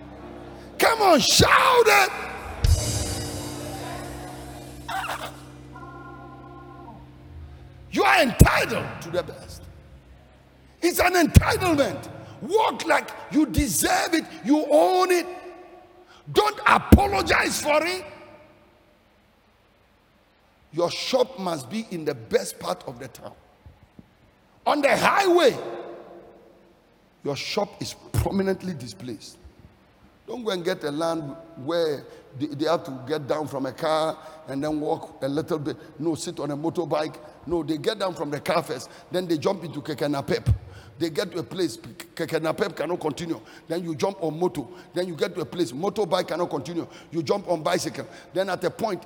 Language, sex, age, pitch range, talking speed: English, male, 50-69, 155-210 Hz, 140 wpm